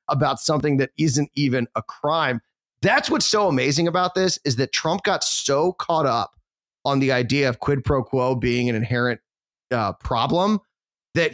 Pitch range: 130-175 Hz